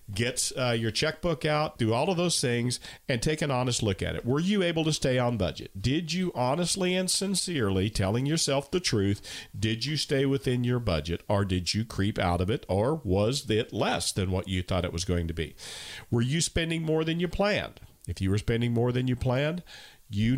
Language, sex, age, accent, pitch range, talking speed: English, male, 50-69, American, 95-130 Hz, 220 wpm